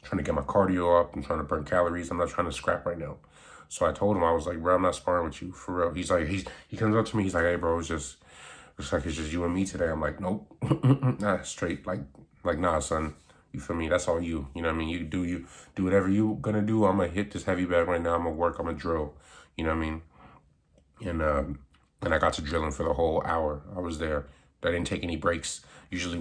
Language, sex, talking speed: English, male, 275 wpm